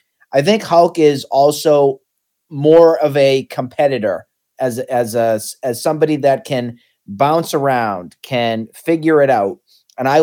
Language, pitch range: English, 125-155 Hz